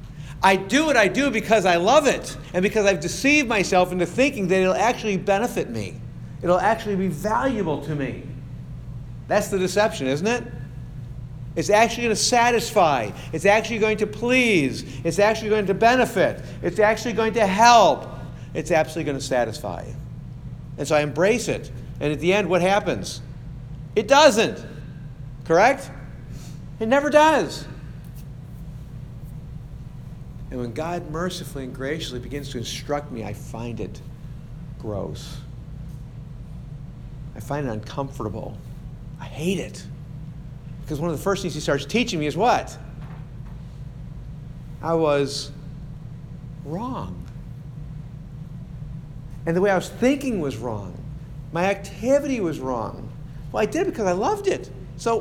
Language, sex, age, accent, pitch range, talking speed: English, male, 50-69, American, 135-200 Hz, 140 wpm